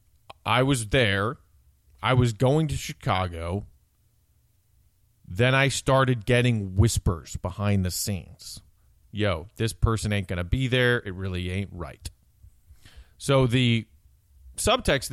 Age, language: 30-49, English